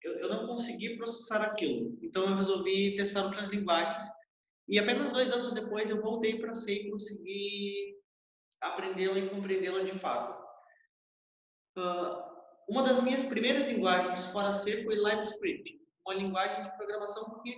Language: Portuguese